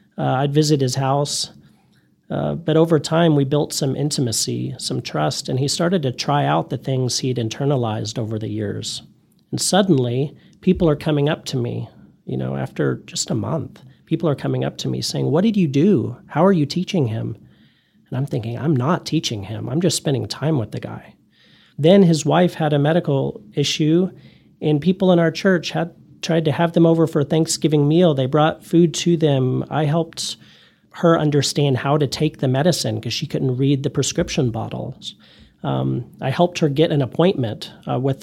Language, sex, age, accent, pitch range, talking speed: English, male, 40-59, American, 130-165 Hz, 195 wpm